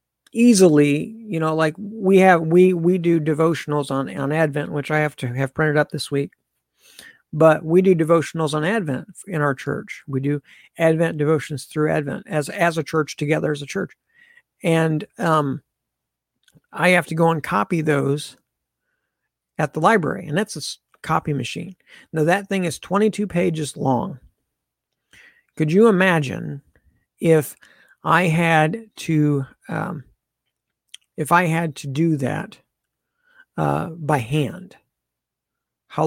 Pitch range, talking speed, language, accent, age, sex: 145-175 Hz, 145 wpm, English, American, 50-69, male